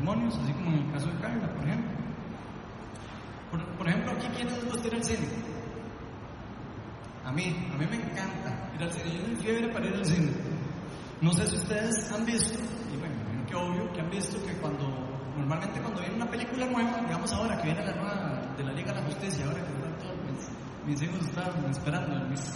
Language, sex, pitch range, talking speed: Spanish, male, 160-225 Hz, 200 wpm